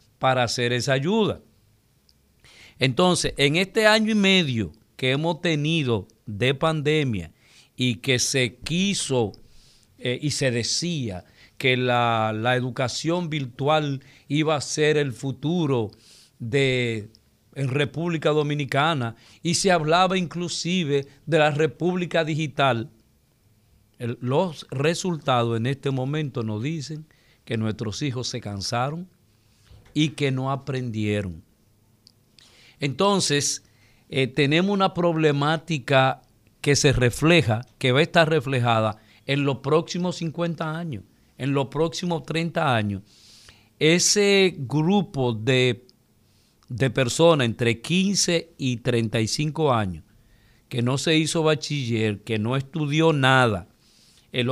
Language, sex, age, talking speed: Spanish, male, 50-69, 115 wpm